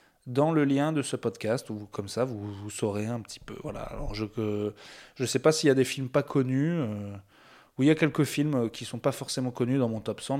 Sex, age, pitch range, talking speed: male, 20-39, 110-135 Hz, 260 wpm